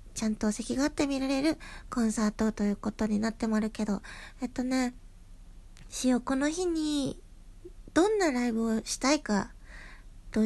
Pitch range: 215-310 Hz